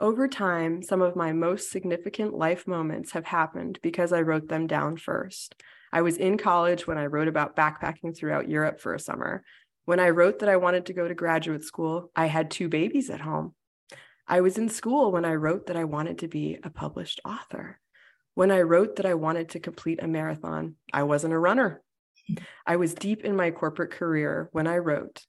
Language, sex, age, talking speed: English, female, 20-39, 205 wpm